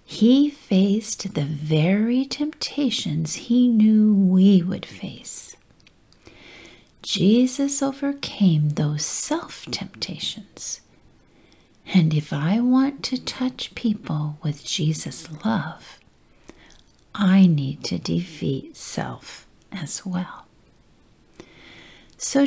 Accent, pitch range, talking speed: American, 160-250 Hz, 90 wpm